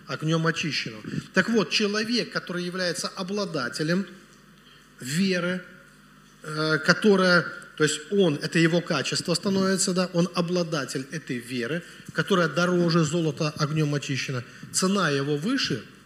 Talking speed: 110 wpm